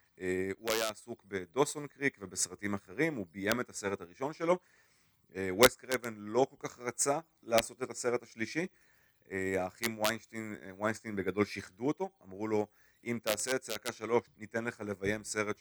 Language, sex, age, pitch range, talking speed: Hebrew, male, 30-49, 95-125 Hz, 165 wpm